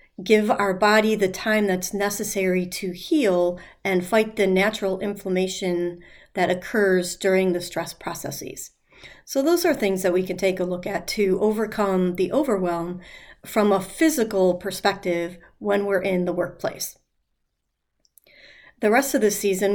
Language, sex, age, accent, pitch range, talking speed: English, female, 40-59, American, 180-205 Hz, 150 wpm